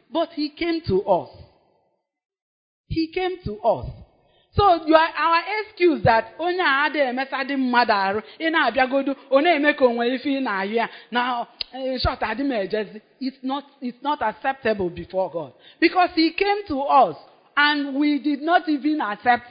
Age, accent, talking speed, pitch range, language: 40-59, Nigerian, 95 wpm, 200-300 Hz, English